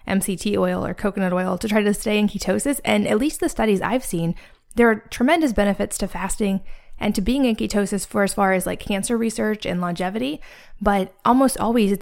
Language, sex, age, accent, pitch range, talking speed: English, female, 20-39, American, 195-225 Hz, 205 wpm